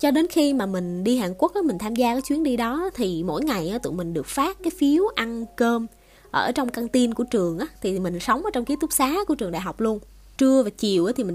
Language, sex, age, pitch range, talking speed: Vietnamese, female, 20-39, 205-290 Hz, 270 wpm